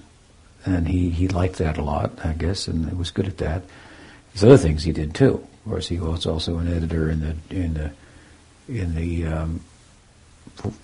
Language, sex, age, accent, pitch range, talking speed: English, male, 60-79, American, 80-100 Hz, 200 wpm